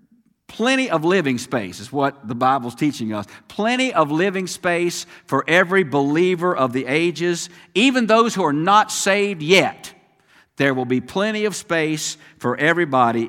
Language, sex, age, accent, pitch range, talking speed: English, male, 50-69, American, 125-180 Hz, 160 wpm